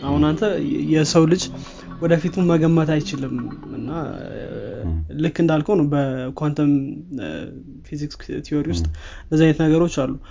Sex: male